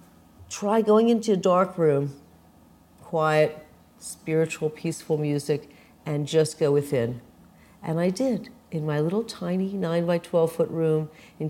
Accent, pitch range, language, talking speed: American, 155-190 Hz, English, 140 wpm